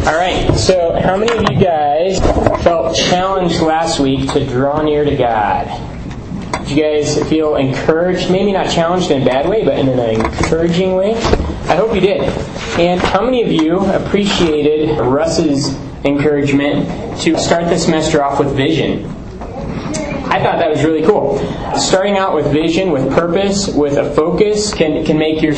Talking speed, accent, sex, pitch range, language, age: 165 wpm, American, male, 140-165 Hz, English, 20-39